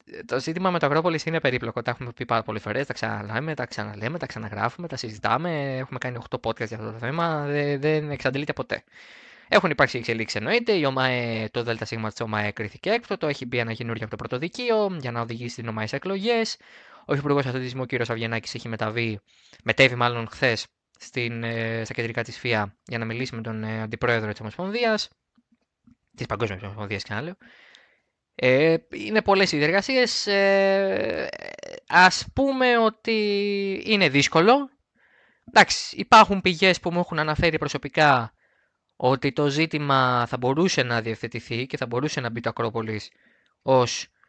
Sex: male